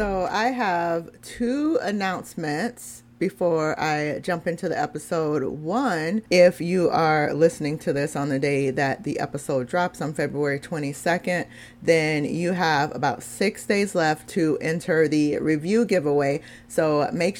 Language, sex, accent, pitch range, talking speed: English, female, American, 150-175 Hz, 145 wpm